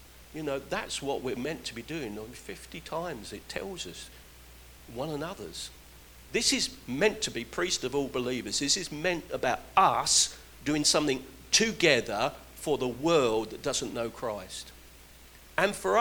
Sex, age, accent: male, 50-69, British